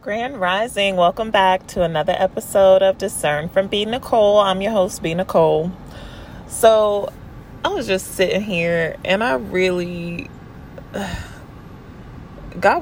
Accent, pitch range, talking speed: American, 150-185 Hz, 125 wpm